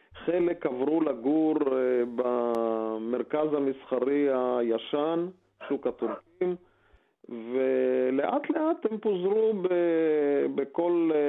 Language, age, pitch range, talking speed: Hebrew, 40-59, 135-175 Hz, 80 wpm